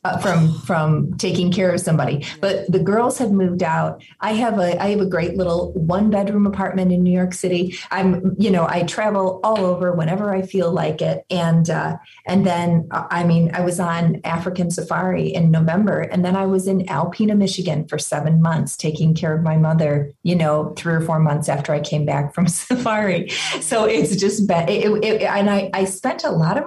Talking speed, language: 210 wpm, English